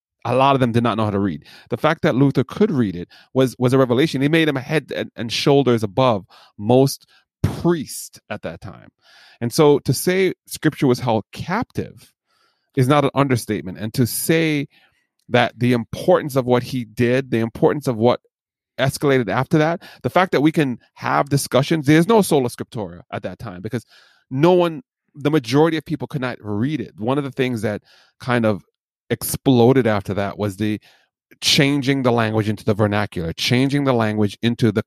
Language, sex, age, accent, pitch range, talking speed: English, male, 30-49, American, 110-140 Hz, 190 wpm